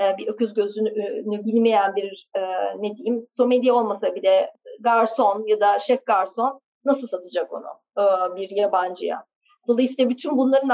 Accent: native